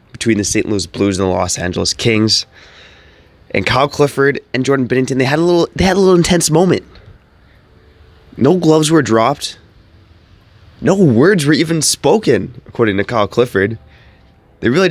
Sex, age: male, 20-39